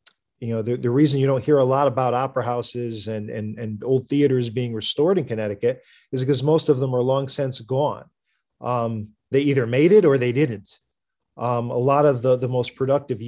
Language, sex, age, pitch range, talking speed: English, male, 40-59, 120-155 Hz, 210 wpm